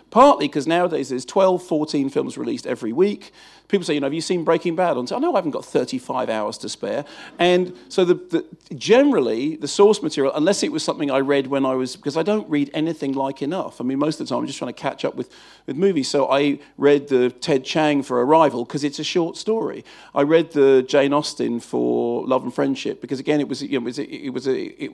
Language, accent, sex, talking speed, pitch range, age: English, British, male, 225 wpm, 135-165 Hz, 40-59